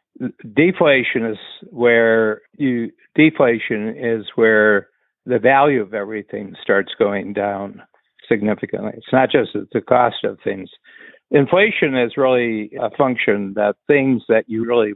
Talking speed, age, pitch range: 130 wpm, 60-79, 100-120 Hz